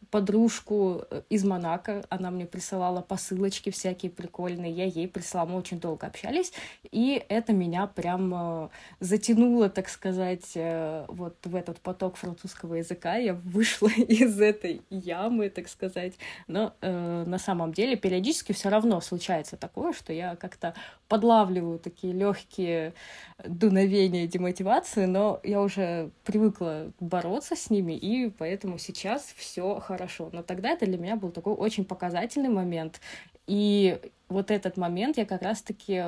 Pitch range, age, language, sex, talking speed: 180-210 Hz, 20-39, Russian, female, 140 wpm